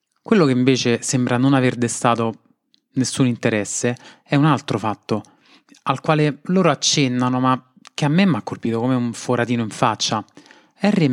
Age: 20-39